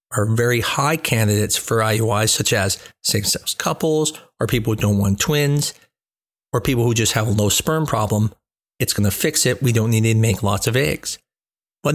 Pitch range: 115-155 Hz